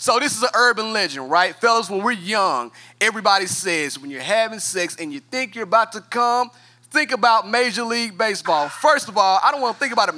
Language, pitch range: English, 195-260 Hz